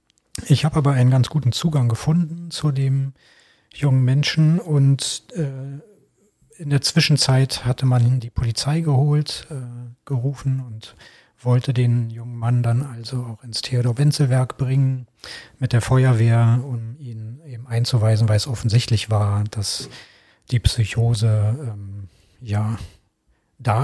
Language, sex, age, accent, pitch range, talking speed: German, male, 40-59, German, 115-135 Hz, 135 wpm